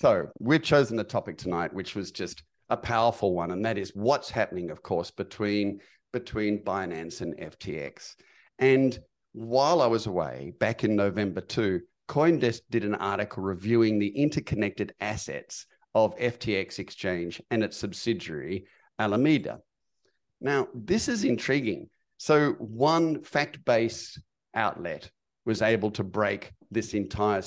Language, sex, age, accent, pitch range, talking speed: English, male, 50-69, Australian, 100-125 Hz, 135 wpm